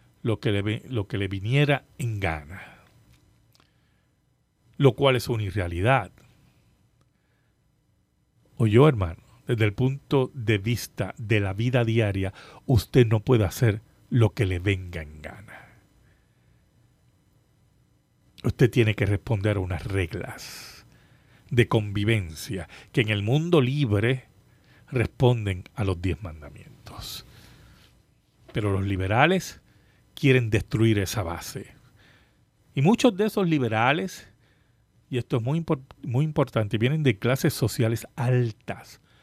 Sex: male